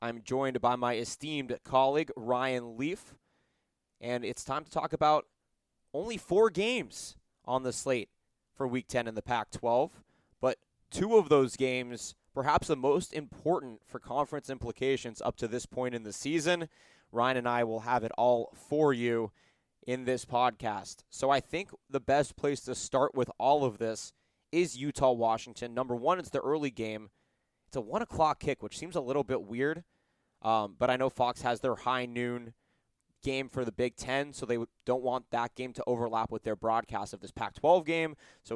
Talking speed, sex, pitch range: 185 wpm, male, 120-140 Hz